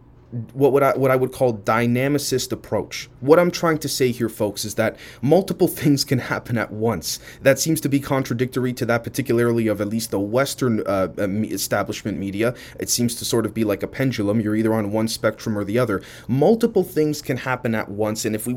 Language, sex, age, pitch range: English, male, 30-49, 110-135 Hz